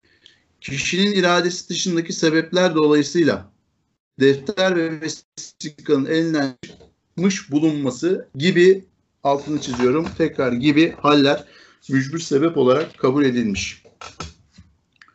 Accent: native